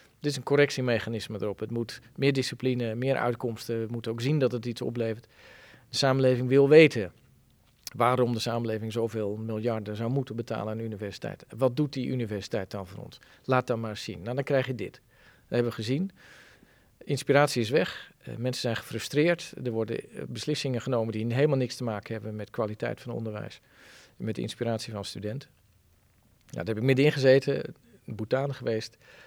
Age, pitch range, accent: 40-59, 115-135 Hz, Dutch